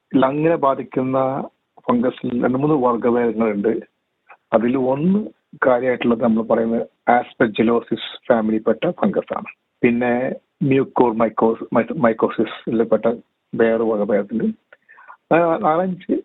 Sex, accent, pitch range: male, native, 115-140 Hz